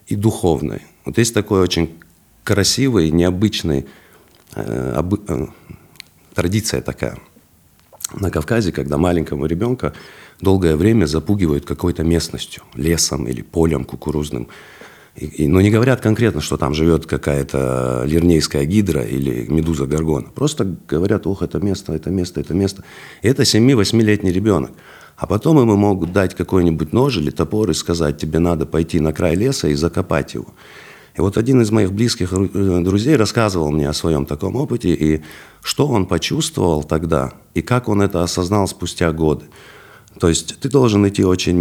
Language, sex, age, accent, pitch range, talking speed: Russian, male, 50-69, native, 75-105 Hz, 150 wpm